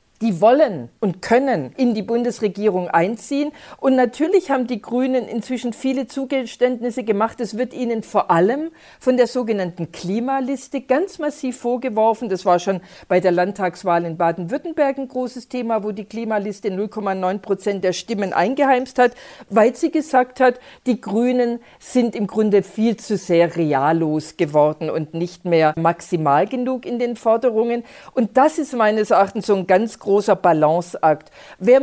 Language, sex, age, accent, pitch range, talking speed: German, female, 50-69, German, 195-260 Hz, 155 wpm